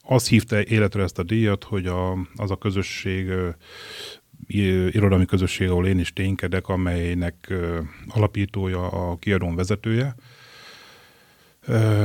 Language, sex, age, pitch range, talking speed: Hungarian, male, 30-49, 90-105 Hz, 130 wpm